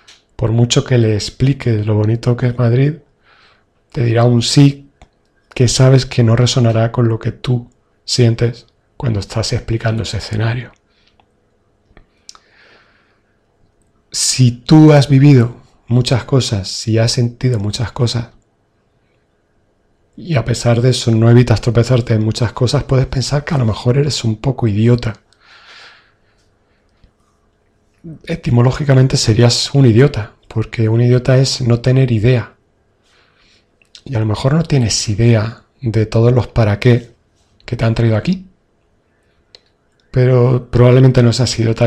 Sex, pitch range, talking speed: male, 110-125 Hz, 135 wpm